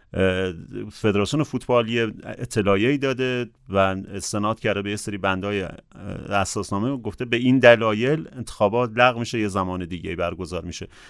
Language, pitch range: Persian, 100-125 Hz